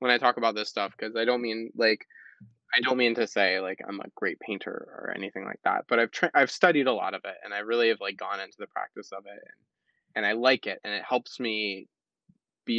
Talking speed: 250 wpm